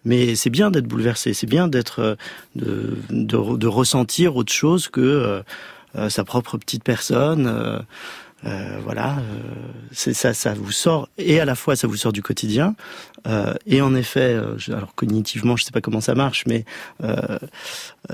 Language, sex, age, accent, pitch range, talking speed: French, male, 30-49, French, 115-140 Hz, 180 wpm